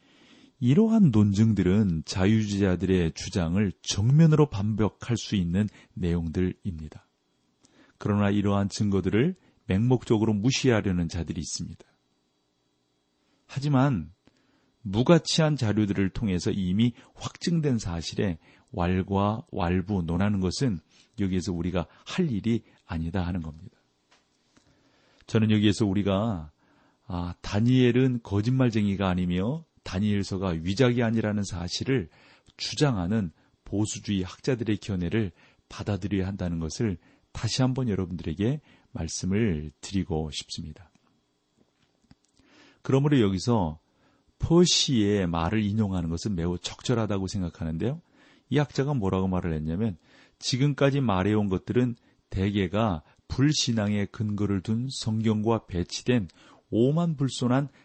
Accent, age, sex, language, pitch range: native, 40-59, male, Korean, 90-120 Hz